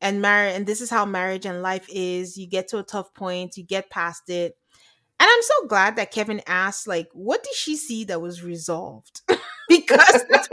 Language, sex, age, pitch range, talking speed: English, female, 30-49, 200-300 Hz, 210 wpm